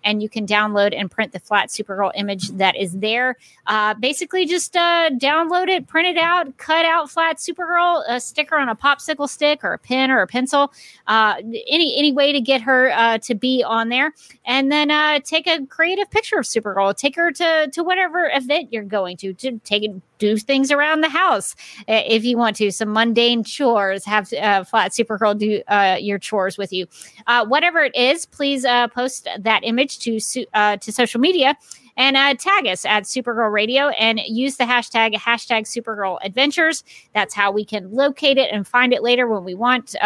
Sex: female